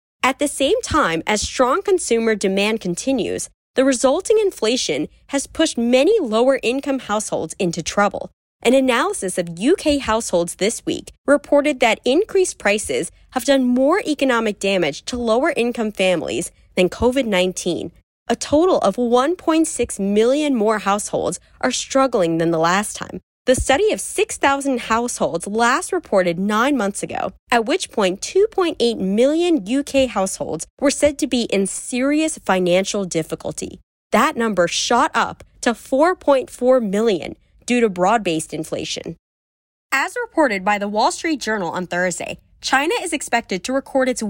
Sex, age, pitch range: female, 20-39, 195-285 Hz